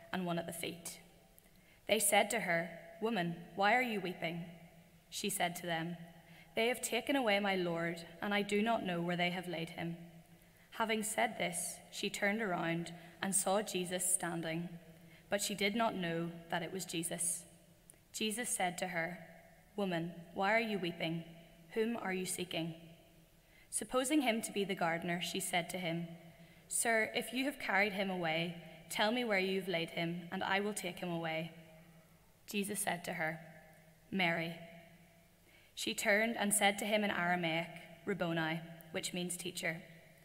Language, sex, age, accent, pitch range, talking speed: English, female, 10-29, Irish, 165-200 Hz, 165 wpm